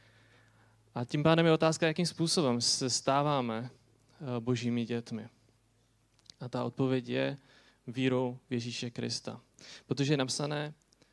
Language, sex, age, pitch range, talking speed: Czech, male, 20-39, 115-130 Hz, 120 wpm